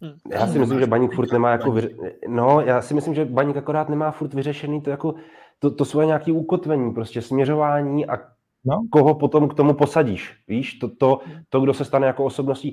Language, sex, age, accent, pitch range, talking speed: Czech, male, 20-39, native, 110-135 Hz, 205 wpm